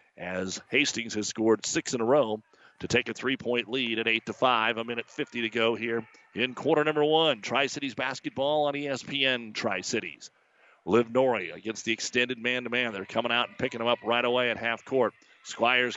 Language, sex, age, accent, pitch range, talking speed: English, male, 40-59, American, 115-140 Hz, 190 wpm